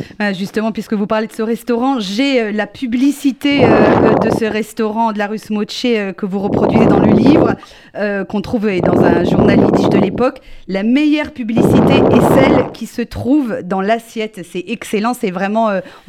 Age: 40-59